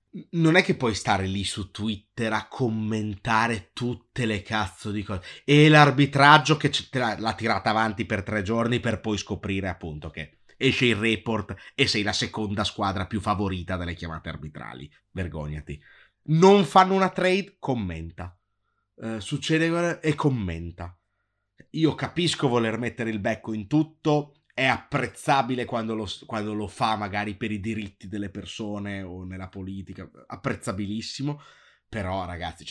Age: 30-49